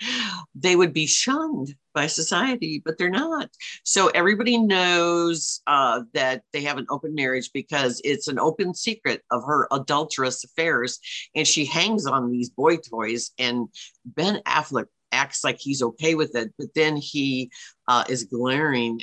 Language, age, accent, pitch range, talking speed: English, 50-69, American, 125-170 Hz, 160 wpm